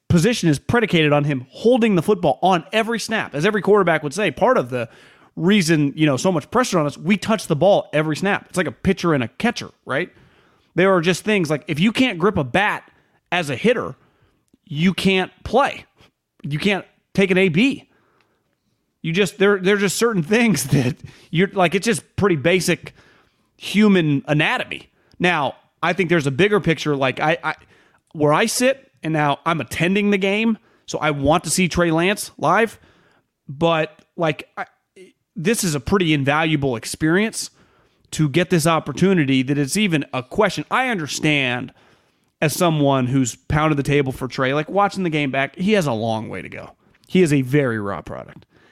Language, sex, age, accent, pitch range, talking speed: English, male, 30-49, American, 145-195 Hz, 185 wpm